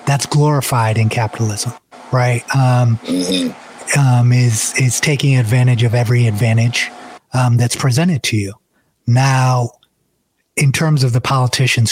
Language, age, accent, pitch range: English, 30-49, American, 120-140 Hz